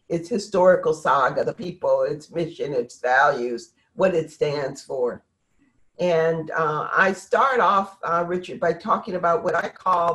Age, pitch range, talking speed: 50-69, 155-200 Hz, 155 wpm